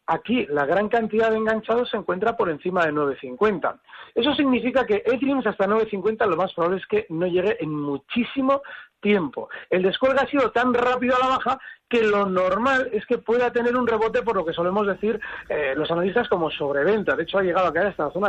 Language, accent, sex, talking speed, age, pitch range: Spanish, Spanish, male, 215 wpm, 40-59, 175-240 Hz